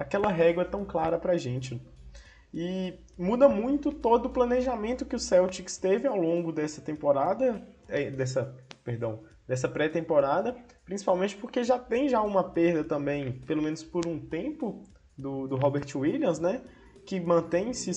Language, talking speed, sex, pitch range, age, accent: Portuguese, 145 wpm, male, 150-235 Hz, 20-39, Brazilian